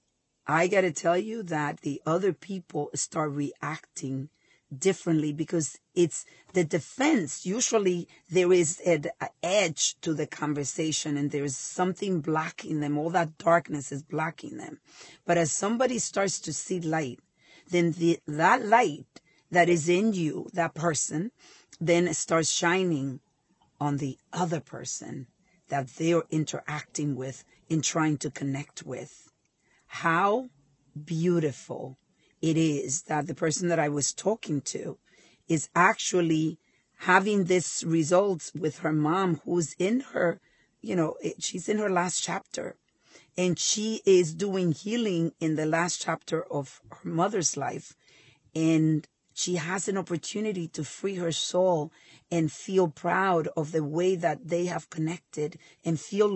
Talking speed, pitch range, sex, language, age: 140 wpm, 150-185 Hz, female, English, 40-59